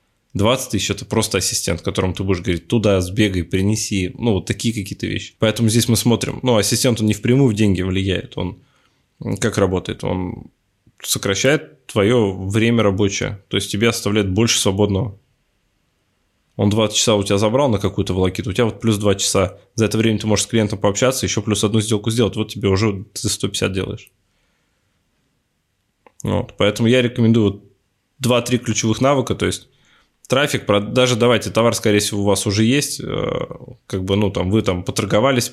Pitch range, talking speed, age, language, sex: 100-115 Hz, 175 wpm, 20-39, Russian, male